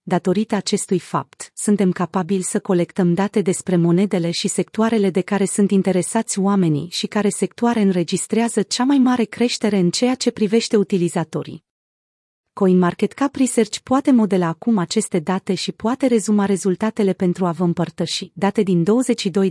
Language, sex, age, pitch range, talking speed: Romanian, female, 30-49, 175-225 Hz, 150 wpm